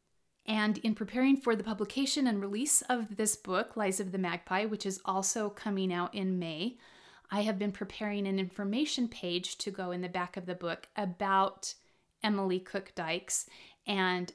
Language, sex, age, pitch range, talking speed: English, female, 30-49, 185-220 Hz, 175 wpm